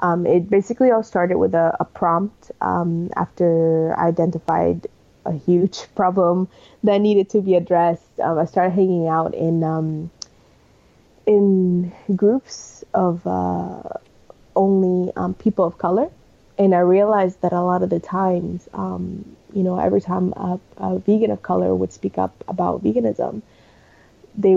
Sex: female